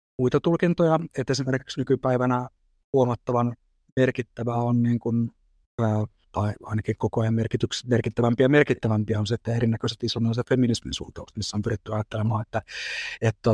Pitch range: 110-120 Hz